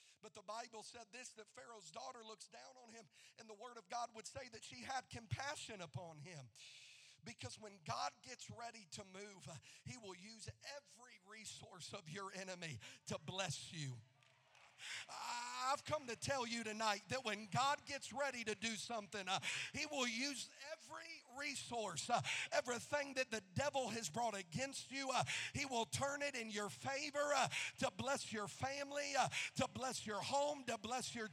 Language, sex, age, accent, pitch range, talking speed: English, male, 40-59, American, 200-260 Hz, 180 wpm